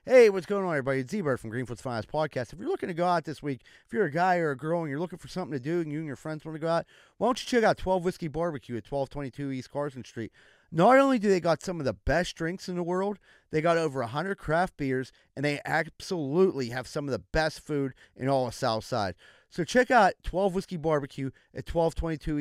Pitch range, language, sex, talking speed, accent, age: 135-185 Hz, English, male, 255 wpm, American, 30-49